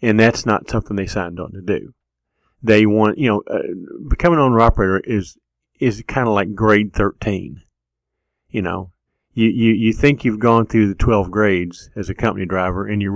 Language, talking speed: English, 190 wpm